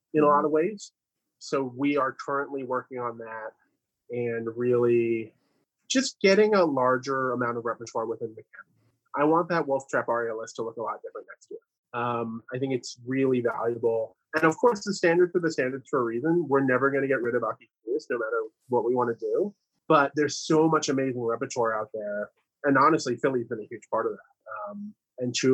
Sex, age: male, 30-49